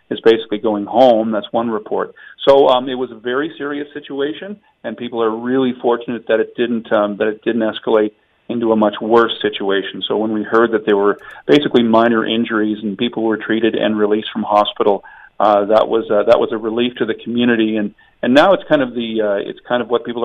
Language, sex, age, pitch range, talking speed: English, male, 40-59, 105-120 Hz, 220 wpm